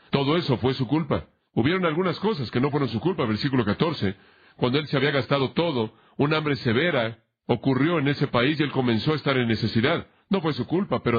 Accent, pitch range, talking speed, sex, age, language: Mexican, 115-145 Hz, 215 wpm, male, 40-59, Spanish